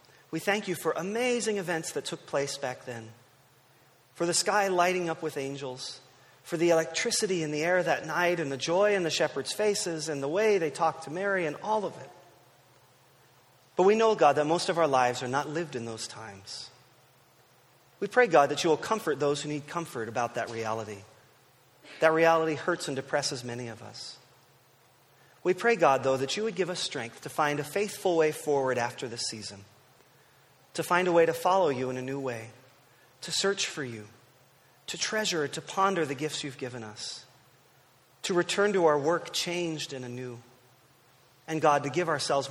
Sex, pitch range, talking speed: male, 130-170 Hz, 195 wpm